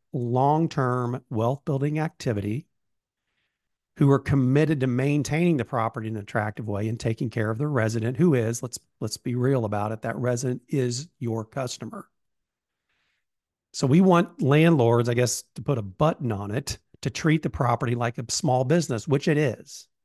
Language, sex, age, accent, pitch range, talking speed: English, male, 50-69, American, 115-150 Hz, 170 wpm